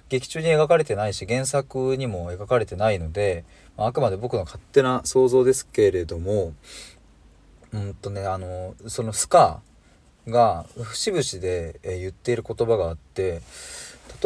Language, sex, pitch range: Japanese, male, 85-120 Hz